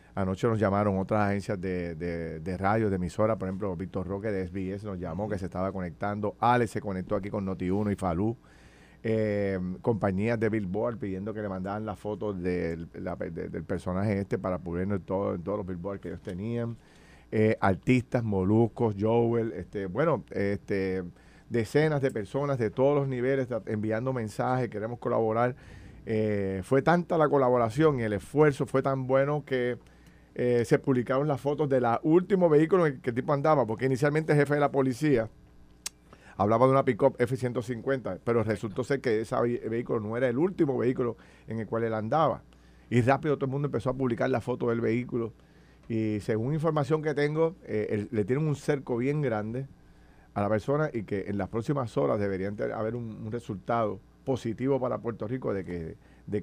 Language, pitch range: Spanish, 100-130 Hz